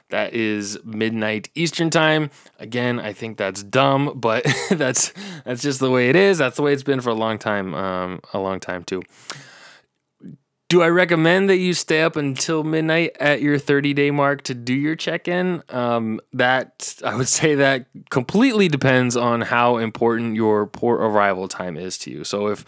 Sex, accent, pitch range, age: male, American, 105-140 Hz, 20-39